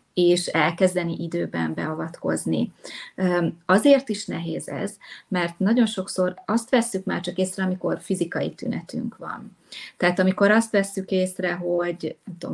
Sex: female